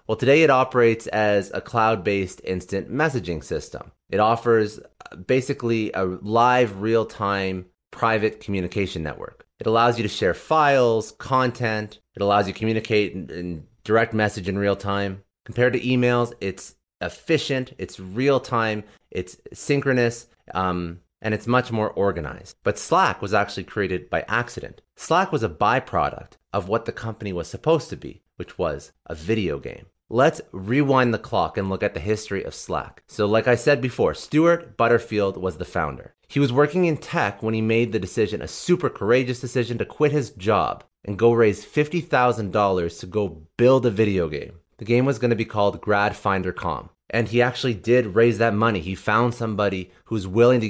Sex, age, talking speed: male, 30-49, 175 wpm